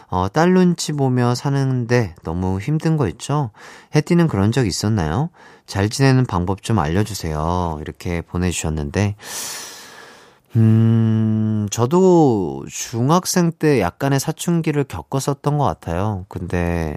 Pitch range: 90-130 Hz